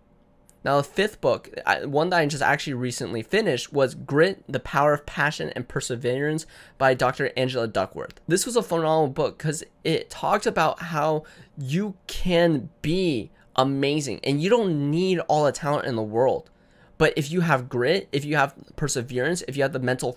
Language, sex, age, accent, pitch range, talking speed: English, male, 20-39, American, 125-170 Hz, 180 wpm